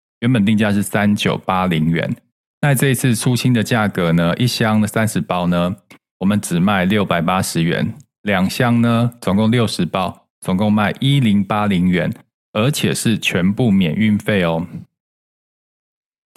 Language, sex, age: Chinese, male, 20-39